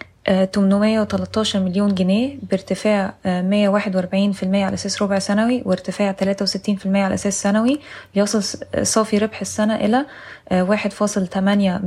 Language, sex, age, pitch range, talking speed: Arabic, female, 20-39, 195-220 Hz, 105 wpm